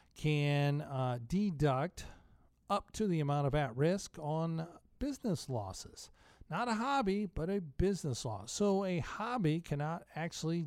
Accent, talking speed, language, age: American, 140 wpm, English, 50-69